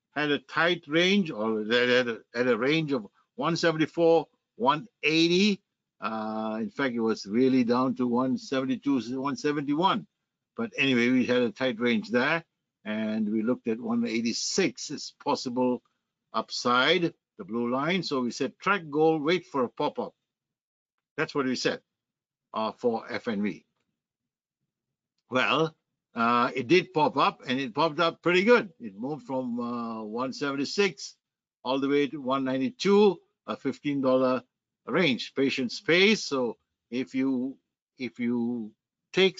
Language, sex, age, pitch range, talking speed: English, male, 60-79, 120-175 Hz, 135 wpm